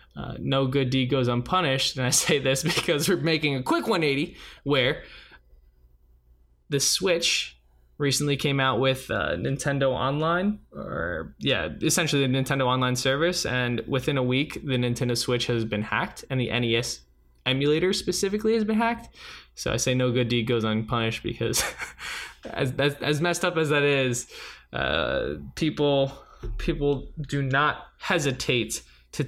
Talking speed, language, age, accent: 155 wpm, English, 20-39, American